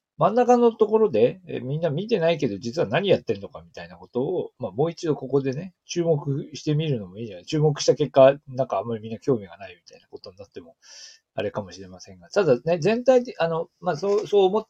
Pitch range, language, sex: 125-205 Hz, Japanese, male